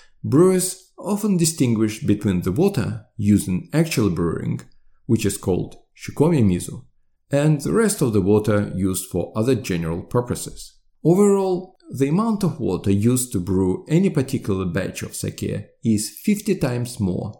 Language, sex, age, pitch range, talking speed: English, male, 40-59, 105-155 Hz, 150 wpm